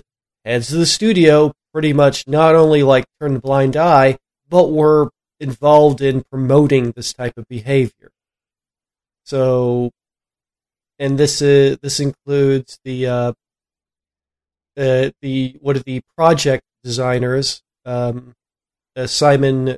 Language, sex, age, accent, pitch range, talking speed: English, male, 30-49, American, 120-145 Hz, 120 wpm